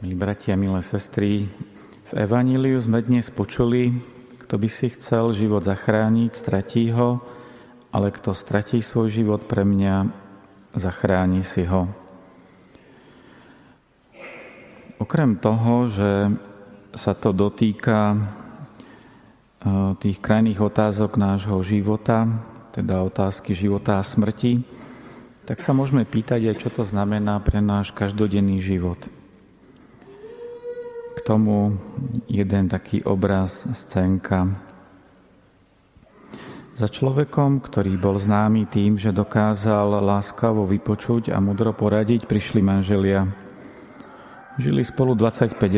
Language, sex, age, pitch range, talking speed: Slovak, male, 40-59, 100-115 Hz, 105 wpm